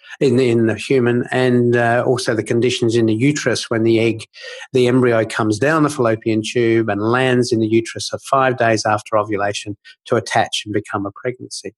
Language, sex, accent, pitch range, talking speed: English, male, Australian, 115-135 Hz, 200 wpm